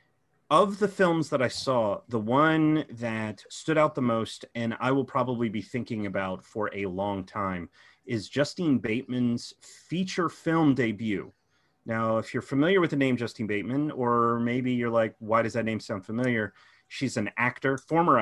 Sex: male